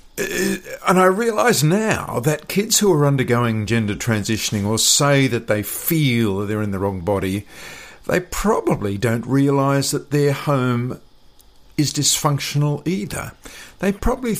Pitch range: 100-135 Hz